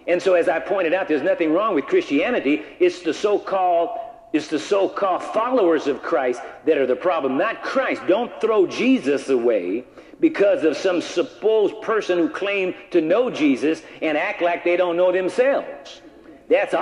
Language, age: English, 50-69